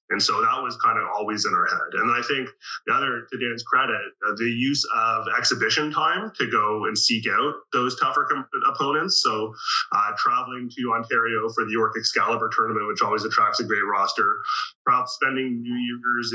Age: 20-39